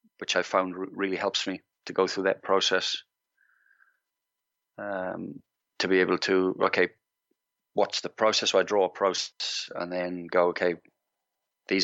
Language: English